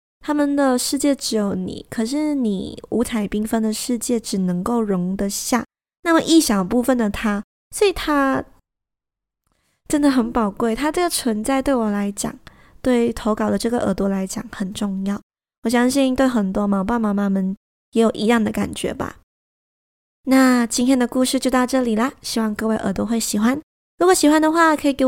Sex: female